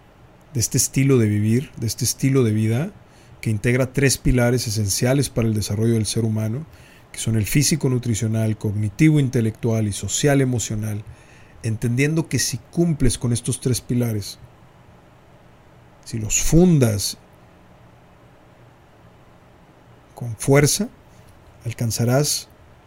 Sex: male